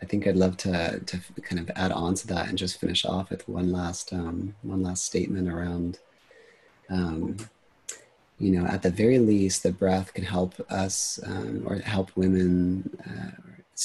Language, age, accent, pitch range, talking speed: English, 30-49, American, 90-100 Hz, 180 wpm